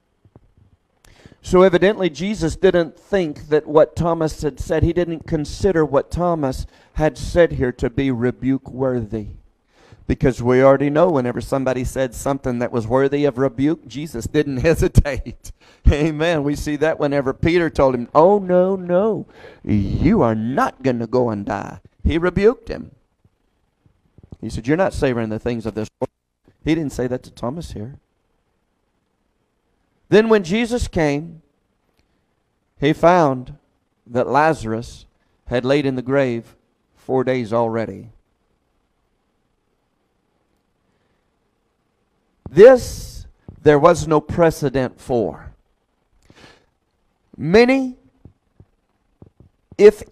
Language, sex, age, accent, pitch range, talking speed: English, male, 40-59, American, 120-170 Hz, 120 wpm